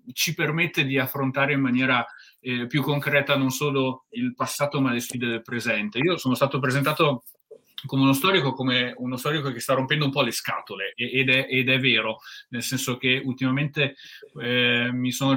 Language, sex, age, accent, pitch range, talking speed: Italian, male, 30-49, native, 125-145 Hz, 180 wpm